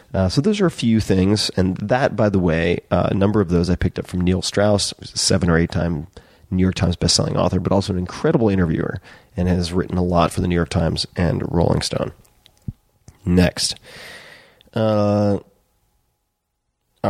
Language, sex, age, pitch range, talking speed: English, male, 30-49, 85-105 Hz, 180 wpm